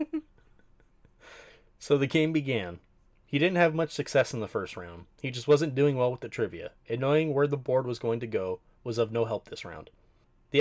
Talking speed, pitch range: 210 wpm, 115-145 Hz